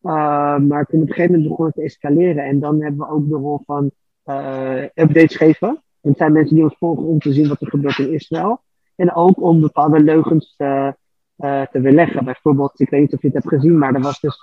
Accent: Dutch